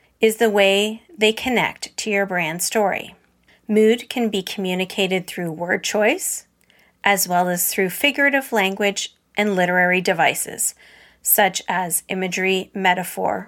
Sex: female